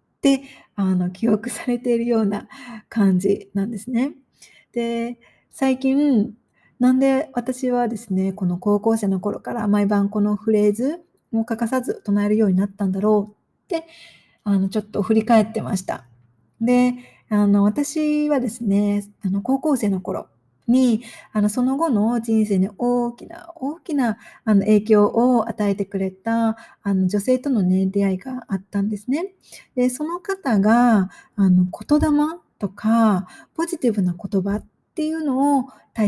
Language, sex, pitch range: Japanese, female, 205-260 Hz